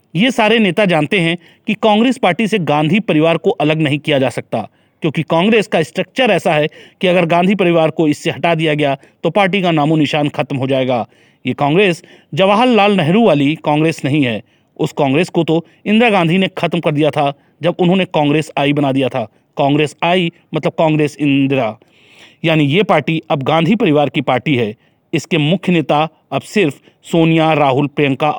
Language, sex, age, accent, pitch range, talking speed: Hindi, male, 40-59, native, 145-175 Hz, 185 wpm